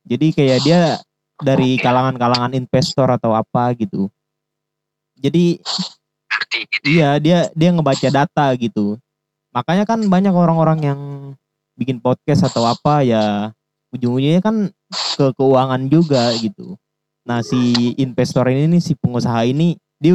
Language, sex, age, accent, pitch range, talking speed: Indonesian, male, 20-39, native, 125-155 Hz, 120 wpm